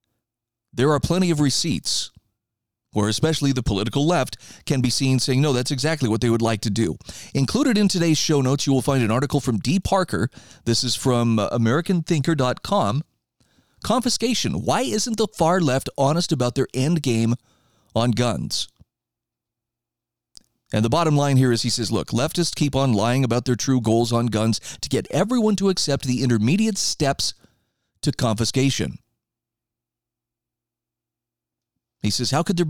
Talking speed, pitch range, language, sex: 160 wpm, 115-160 Hz, English, male